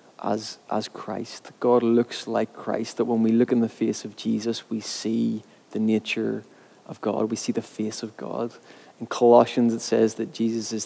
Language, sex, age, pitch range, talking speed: English, male, 20-39, 110-120 Hz, 195 wpm